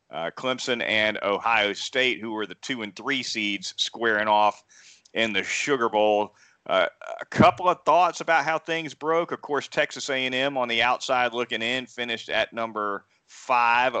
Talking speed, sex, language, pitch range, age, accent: 170 wpm, male, English, 110-140 Hz, 40-59, American